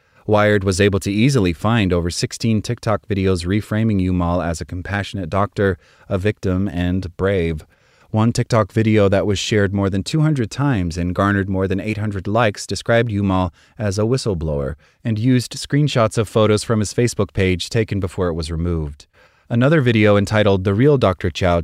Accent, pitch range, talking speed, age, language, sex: American, 95-115 Hz, 170 wpm, 30-49, English, male